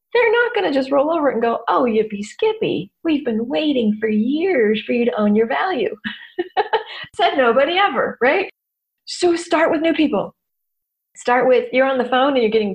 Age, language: 40-59, English